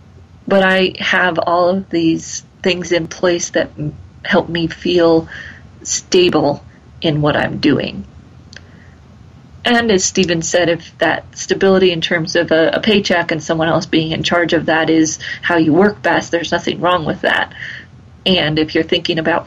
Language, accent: English, American